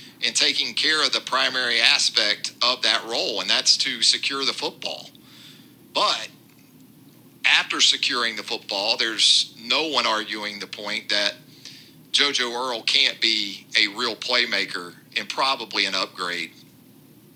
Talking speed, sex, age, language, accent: 135 wpm, male, 50-69, English, American